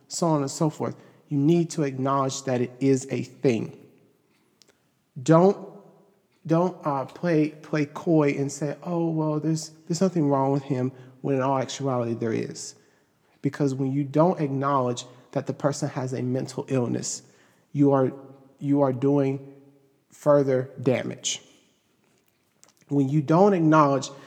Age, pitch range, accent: 40-59, 130-155 Hz, American